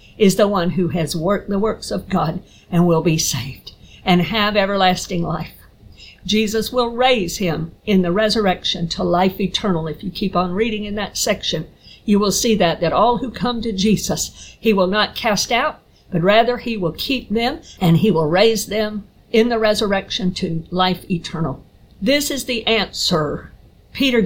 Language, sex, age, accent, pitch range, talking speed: English, female, 50-69, American, 180-240 Hz, 180 wpm